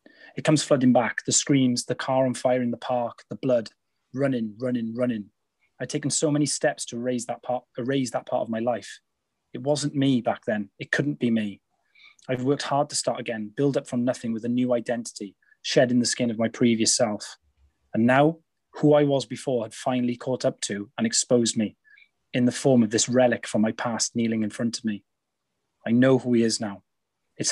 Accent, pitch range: British, 115-130 Hz